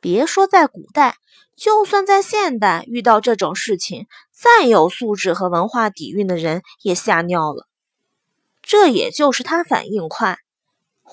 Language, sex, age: Chinese, female, 20-39